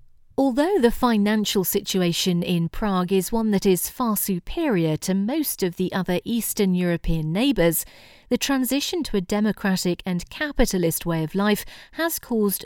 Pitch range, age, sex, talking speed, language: 175-235 Hz, 40-59, female, 150 wpm, Hungarian